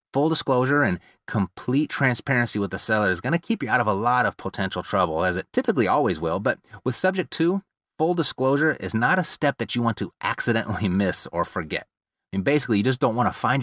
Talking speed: 230 wpm